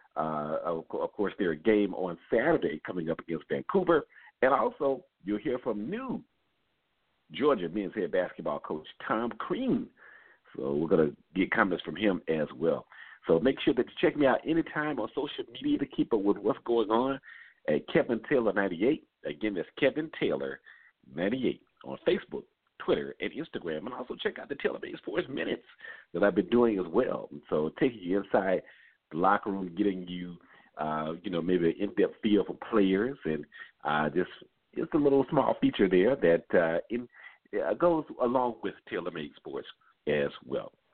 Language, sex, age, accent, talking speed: English, male, 50-69, American, 175 wpm